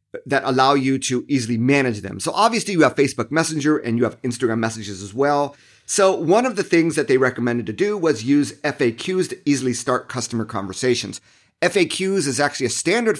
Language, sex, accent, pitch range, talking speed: English, male, American, 120-155 Hz, 195 wpm